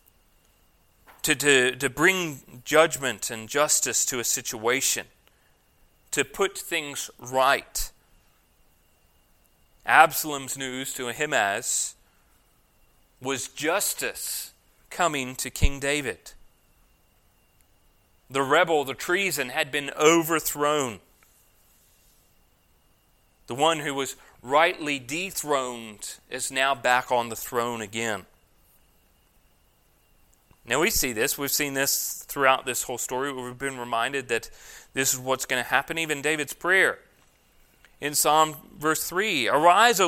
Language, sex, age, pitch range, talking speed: English, male, 30-49, 120-155 Hz, 110 wpm